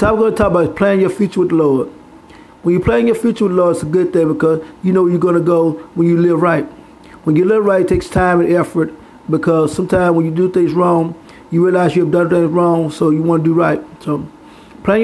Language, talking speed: English, 260 wpm